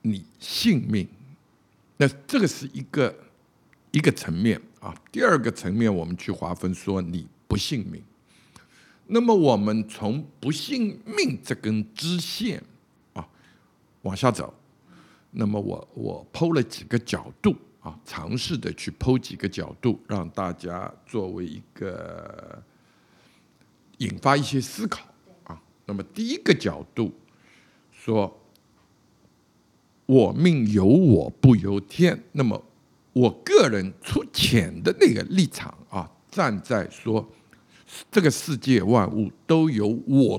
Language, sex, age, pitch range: Chinese, male, 60-79, 100-140 Hz